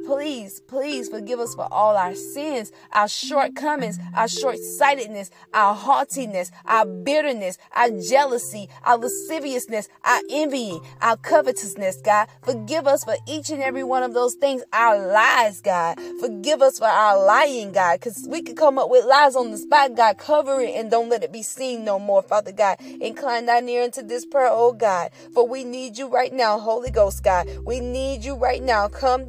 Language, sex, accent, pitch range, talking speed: English, female, American, 225-300 Hz, 185 wpm